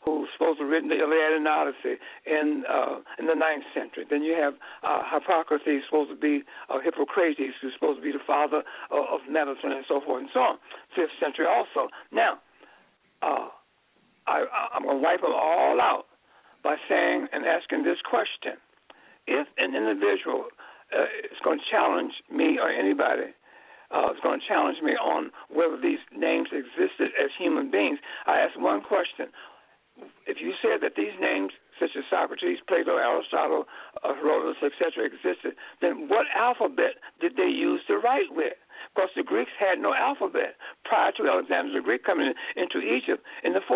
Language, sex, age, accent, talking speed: English, male, 60-79, American, 175 wpm